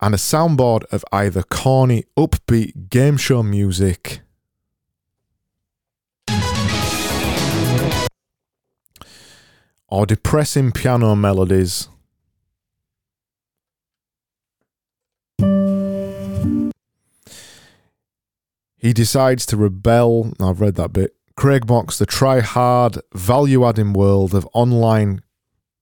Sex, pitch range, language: male, 95-120 Hz, English